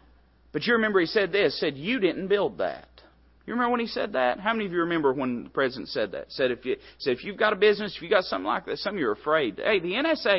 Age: 30-49